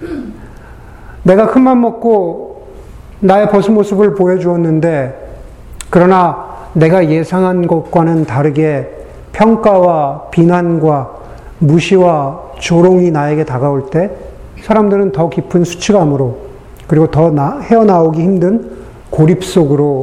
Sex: male